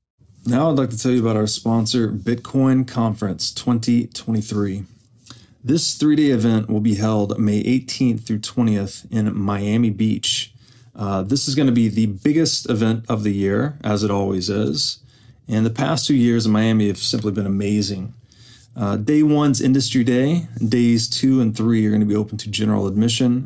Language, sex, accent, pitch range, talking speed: English, male, American, 105-120 Hz, 180 wpm